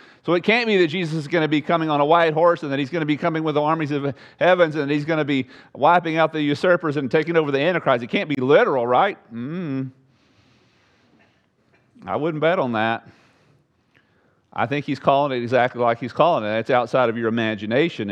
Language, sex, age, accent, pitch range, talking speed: English, male, 40-59, American, 110-140 Hz, 220 wpm